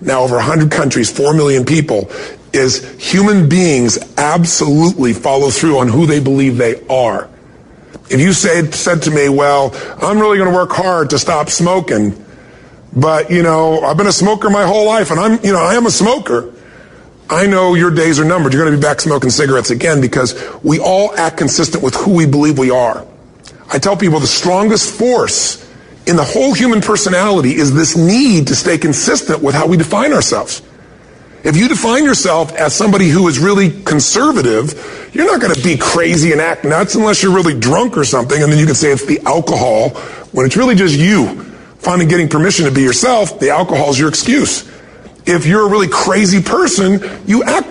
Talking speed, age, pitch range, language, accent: 195 wpm, 40-59, 145-195 Hz, English, American